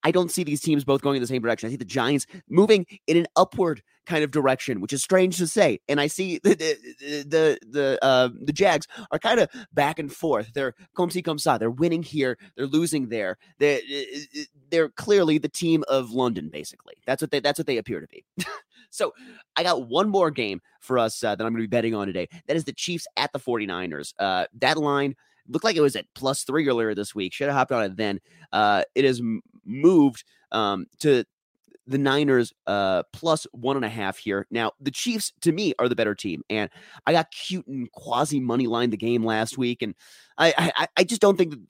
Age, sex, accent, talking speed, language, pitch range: 30-49, male, American, 230 wpm, English, 120-160 Hz